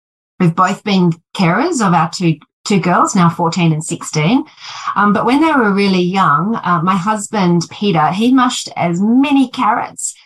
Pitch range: 160-190 Hz